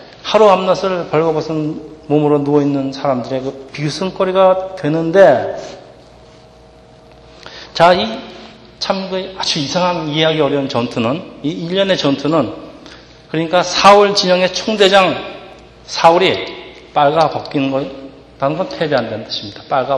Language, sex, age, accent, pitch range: Korean, male, 40-59, native, 145-185 Hz